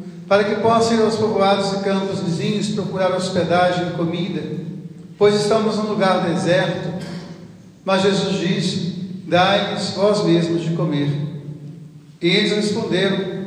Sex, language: male, Portuguese